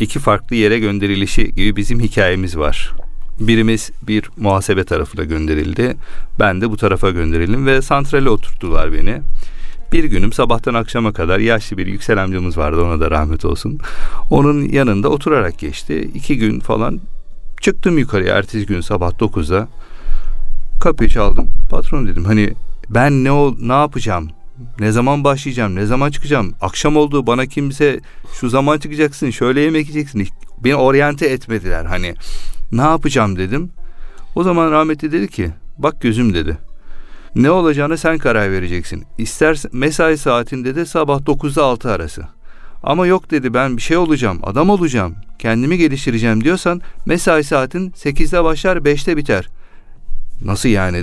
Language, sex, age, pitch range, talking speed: Turkish, male, 40-59, 100-145 Hz, 145 wpm